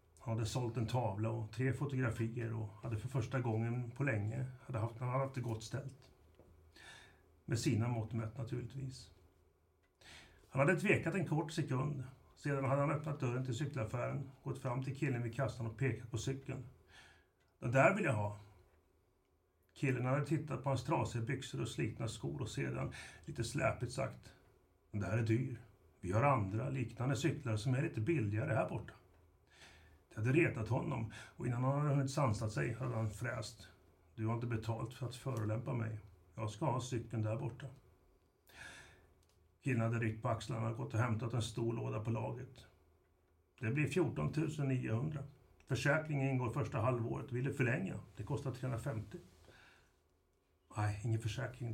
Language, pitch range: Swedish, 110-135 Hz